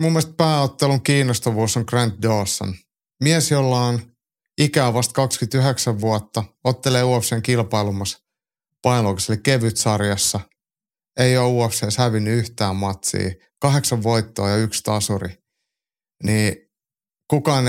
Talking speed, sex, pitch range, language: 110 wpm, male, 105-130 Hz, Finnish